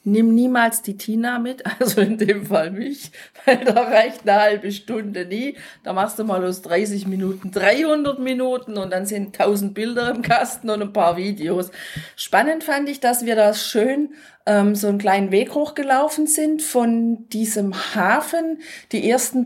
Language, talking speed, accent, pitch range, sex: German, 170 wpm, German, 195-245 Hz, female